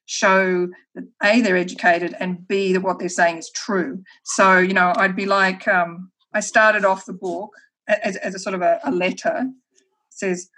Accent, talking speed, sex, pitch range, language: Australian, 195 wpm, female, 190-250 Hz, English